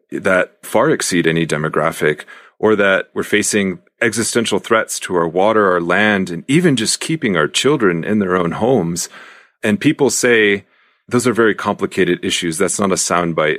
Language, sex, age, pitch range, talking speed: English, male, 30-49, 85-105 Hz, 170 wpm